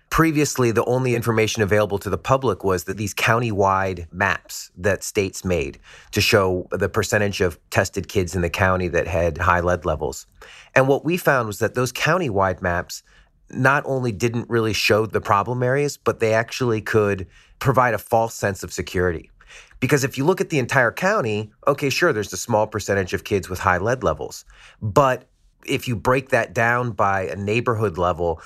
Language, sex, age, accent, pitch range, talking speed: English, male, 30-49, American, 95-115 Hz, 190 wpm